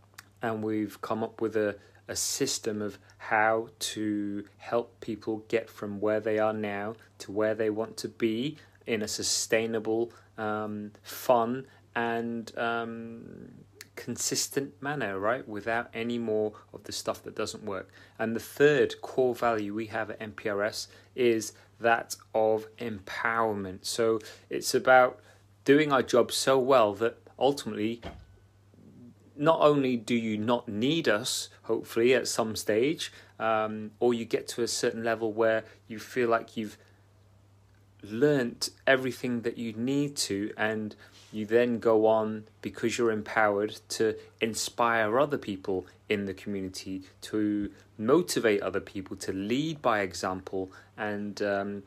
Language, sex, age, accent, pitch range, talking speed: English, male, 30-49, British, 100-115 Hz, 140 wpm